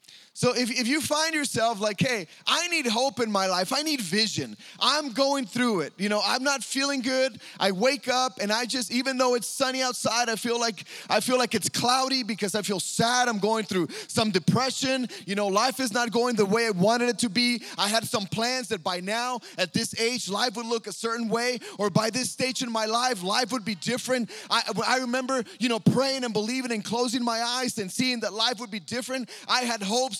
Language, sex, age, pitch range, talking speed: English, male, 20-39, 190-255 Hz, 235 wpm